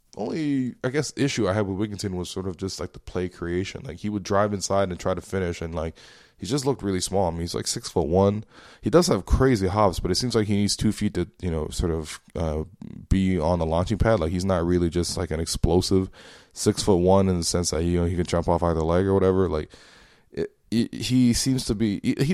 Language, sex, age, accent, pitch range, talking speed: English, male, 20-39, American, 85-105 Hz, 255 wpm